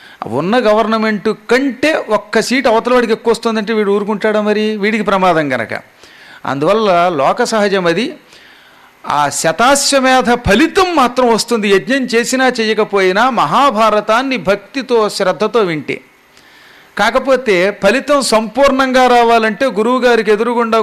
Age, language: 40-59, Telugu